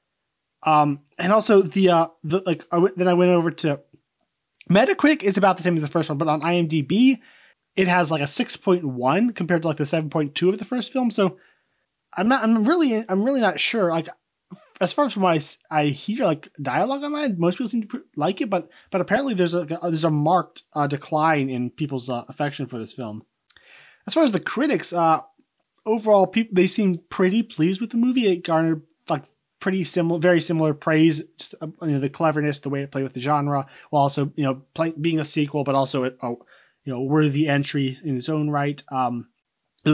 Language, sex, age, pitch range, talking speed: English, male, 20-39, 145-185 Hz, 210 wpm